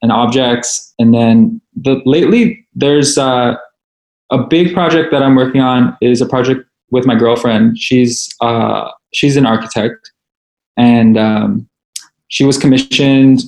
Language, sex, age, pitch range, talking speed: English, male, 20-39, 115-130 Hz, 135 wpm